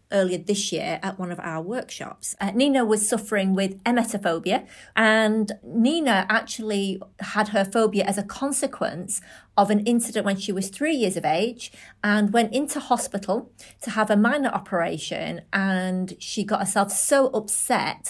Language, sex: English, female